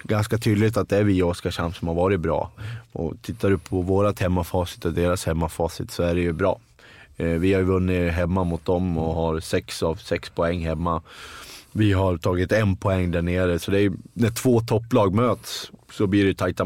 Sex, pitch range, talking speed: male, 85-100 Hz, 210 wpm